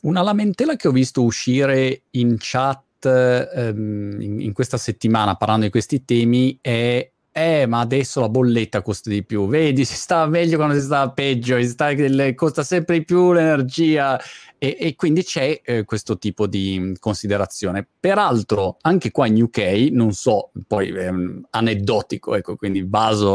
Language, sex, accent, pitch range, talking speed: Italian, male, native, 110-135 Hz, 165 wpm